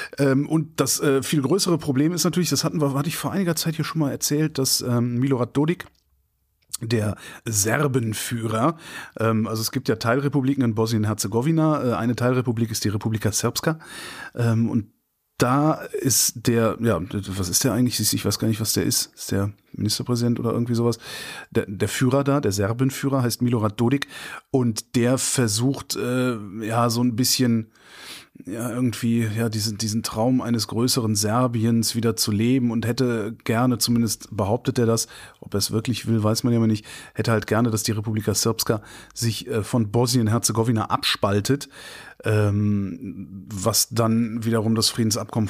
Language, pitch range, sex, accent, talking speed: German, 110-135 Hz, male, German, 160 wpm